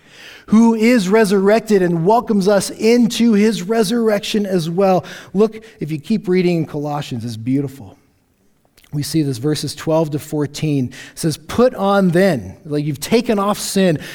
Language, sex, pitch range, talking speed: English, male, 135-190 Hz, 155 wpm